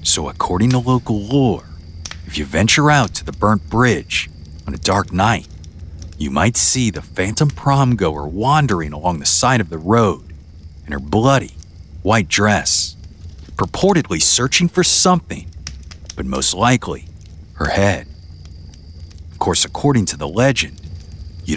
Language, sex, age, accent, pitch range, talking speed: English, male, 40-59, American, 80-120 Hz, 140 wpm